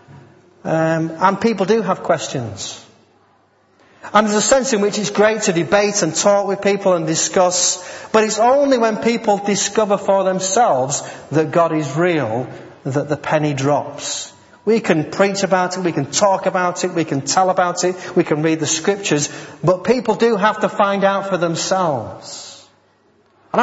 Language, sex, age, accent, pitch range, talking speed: English, male, 30-49, British, 145-185 Hz, 175 wpm